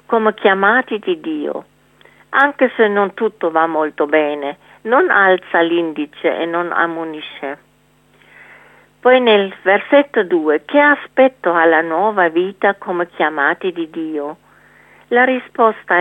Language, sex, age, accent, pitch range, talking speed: Italian, female, 50-69, native, 170-230 Hz, 120 wpm